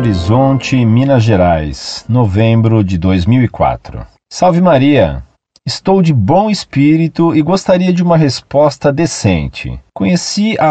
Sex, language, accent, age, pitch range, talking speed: male, Portuguese, Brazilian, 40-59, 110-170 Hz, 110 wpm